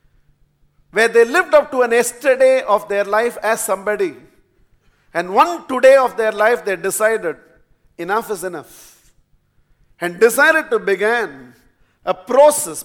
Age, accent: 50-69, Indian